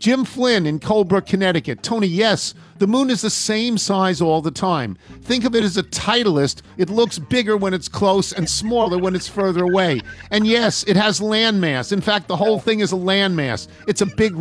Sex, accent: male, American